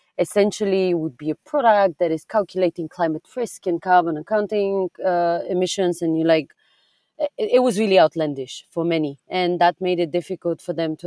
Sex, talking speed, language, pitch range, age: female, 180 wpm, English, 160-185 Hz, 30-49